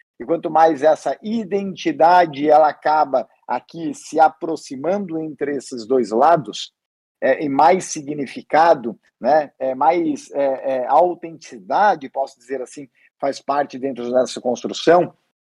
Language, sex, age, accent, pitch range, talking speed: Portuguese, male, 50-69, Brazilian, 145-185 Hz, 130 wpm